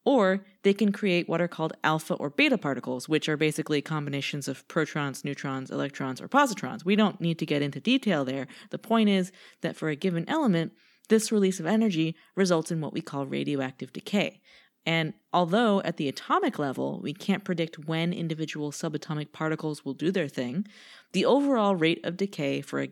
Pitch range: 150-195 Hz